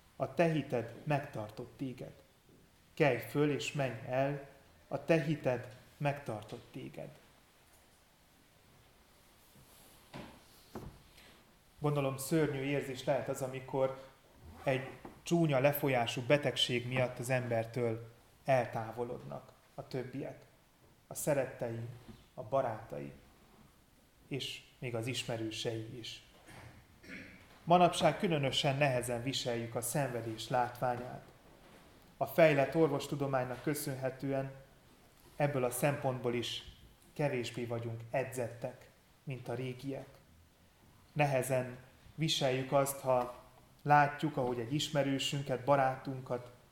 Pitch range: 120-140 Hz